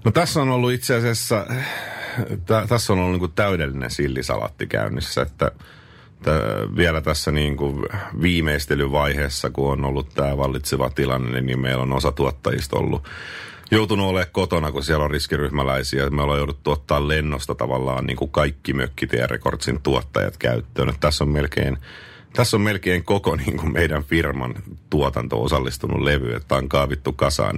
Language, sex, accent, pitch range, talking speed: Finnish, male, native, 70-90 Hz, 150 wpm